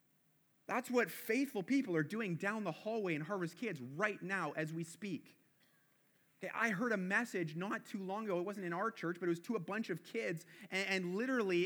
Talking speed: 215 wpm